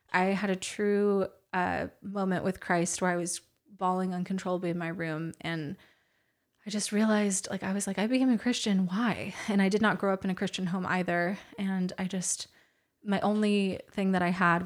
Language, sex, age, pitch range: English, female, 20-39, 180-205 Hz